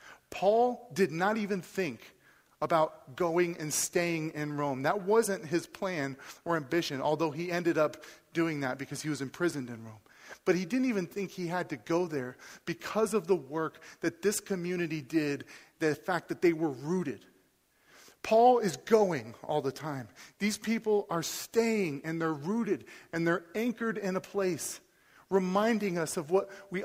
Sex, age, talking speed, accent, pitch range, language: male, 40-59, 170 wpm, American, 165-200 Hz, English